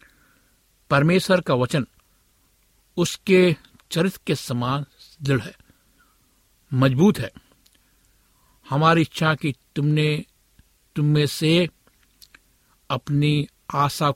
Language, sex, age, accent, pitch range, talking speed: Hindi, male, 60-79, native, 135-175 Hz, 85 wpm